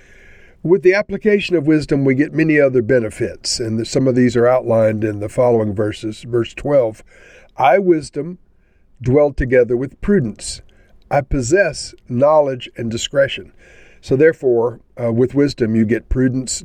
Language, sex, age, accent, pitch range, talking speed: English, male, 50-69, American, 115-155 Hz, 150 wpm